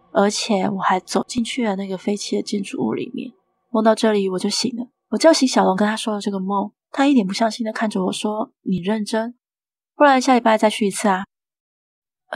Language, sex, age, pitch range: Chinese, female, 20-39, 195-240 Hz